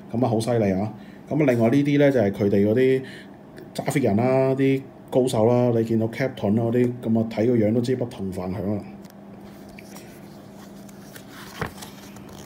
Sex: male